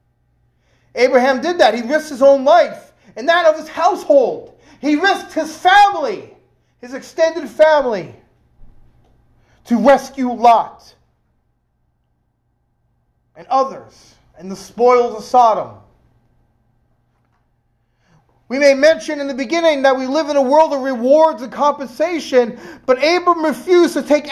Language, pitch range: English, 220-310 Hz